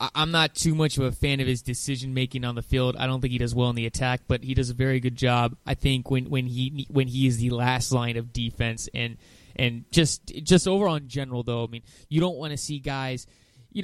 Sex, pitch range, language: male, 125-155 Hz, English